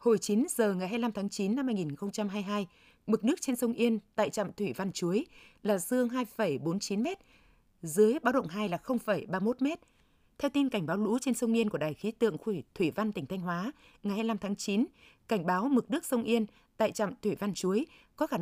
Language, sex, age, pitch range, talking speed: Vietnamese, female, 20-39, 195-235 Hz, 205 wpm